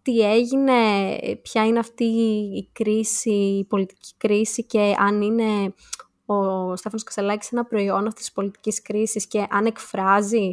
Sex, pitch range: female, 200-275 Hz